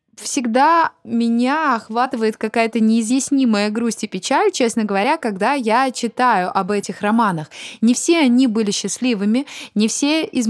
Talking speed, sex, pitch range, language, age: 135 wpm, female, 195-245 Hz, Russian, 20-39